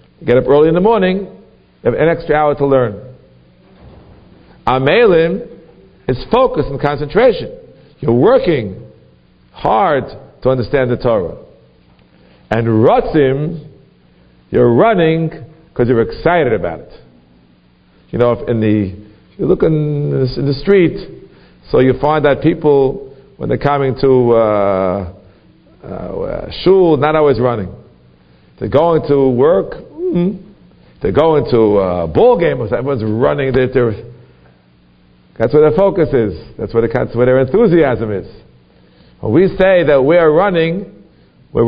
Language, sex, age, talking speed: English, male, 50-69, 140 wpm